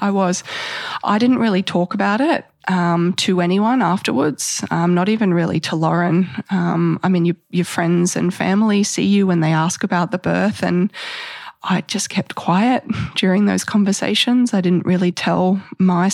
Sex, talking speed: female, 175 wpm